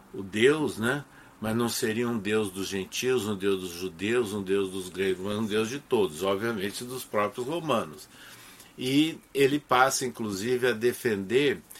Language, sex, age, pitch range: Portuguese, male, 60-79, 105-125 Hz